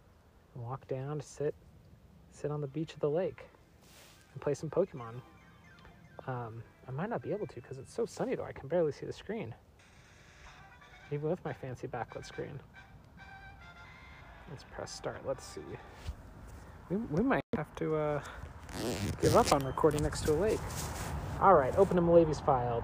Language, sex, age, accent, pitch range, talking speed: English, male, 40-59, American, 120-165 Hz, 170 wpm